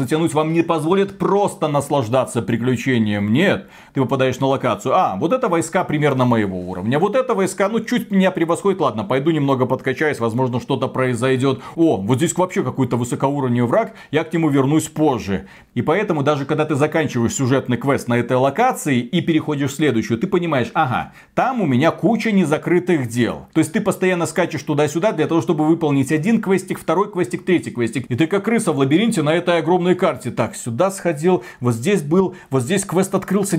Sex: male